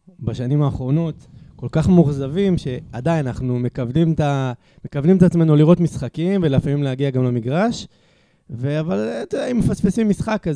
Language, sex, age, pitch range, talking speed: Hebrew, male, 20-39, 140-175 Hz, 135 wpm